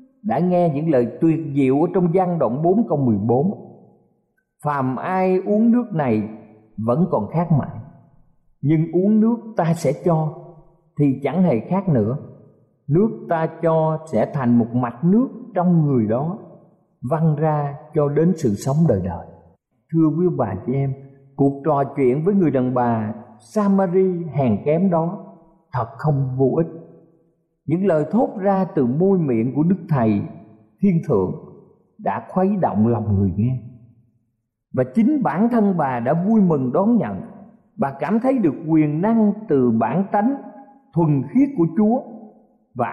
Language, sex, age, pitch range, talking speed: Vietnamese, male, 50-69, 130-190 Hz, 160 wpm